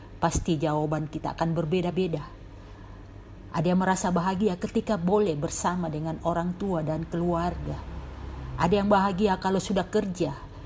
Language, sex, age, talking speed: Indonesian, female, 50-69, 130 wpm